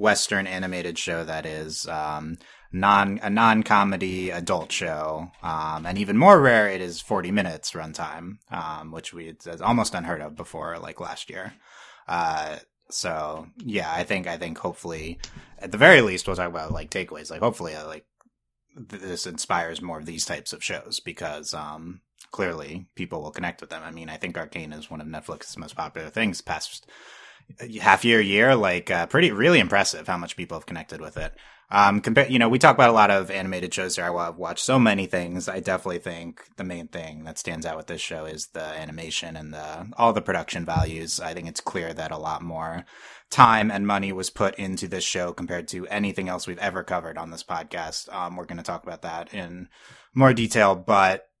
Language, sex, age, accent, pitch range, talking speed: English, male, 30-49, American, 80-95 Hz, 205 wpm